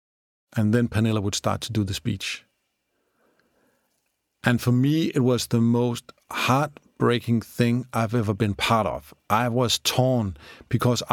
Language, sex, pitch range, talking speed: Dutch, male, 105-125 Hz, 145 wpm